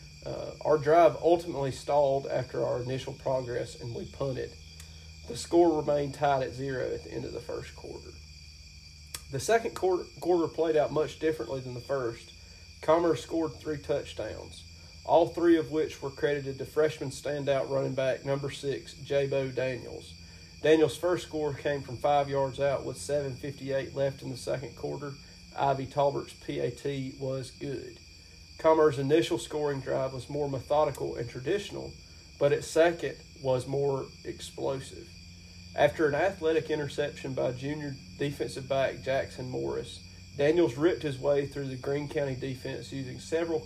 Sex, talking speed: male, 155 wpm